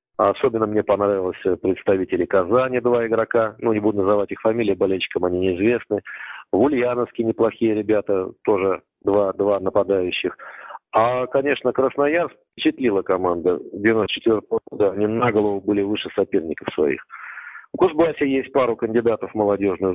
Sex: male